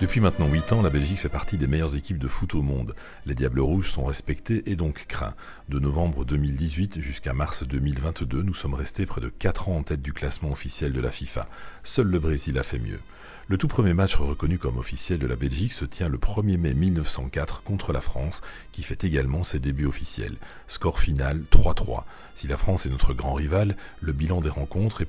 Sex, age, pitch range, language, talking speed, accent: male, 40-59, 70-95 Hz, French, 215 wpm, French